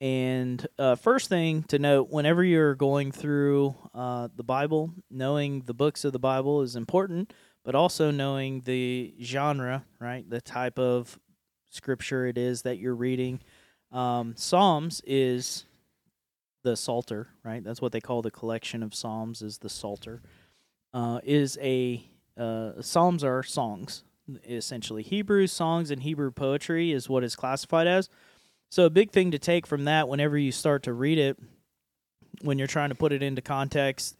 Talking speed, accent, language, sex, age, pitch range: 165 wpm, American, English, male, 30-49, 120-145 Hz